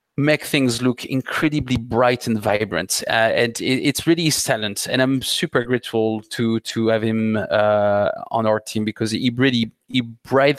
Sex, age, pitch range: male, 30-49, 110-140 Hz